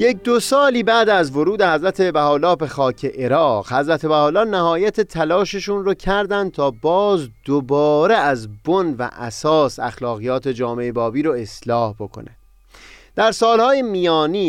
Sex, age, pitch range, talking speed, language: male, 30-49, 125-195 Hz, 135 wpm, Persian